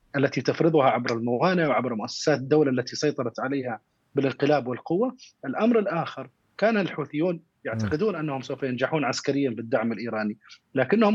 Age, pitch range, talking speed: 30-49, 125-155 Hz, 130 wpm